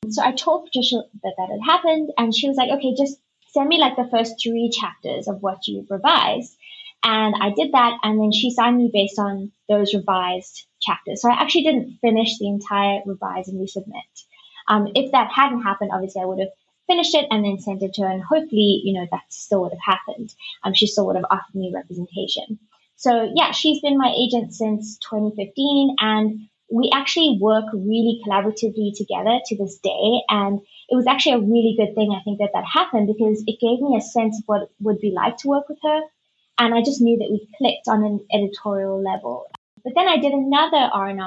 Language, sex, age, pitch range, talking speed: English, female, 20-39, 200-250 Hz, 210 wpm